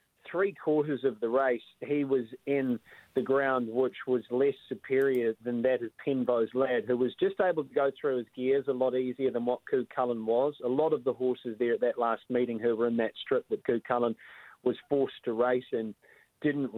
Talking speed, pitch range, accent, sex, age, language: 215 wpm, 125-150 Hz, Australian, male, 30-49, English